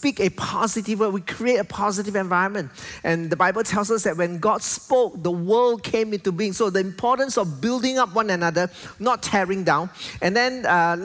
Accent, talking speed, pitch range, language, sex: Malaysian, 200 wpm, 175-225 Hz, English, male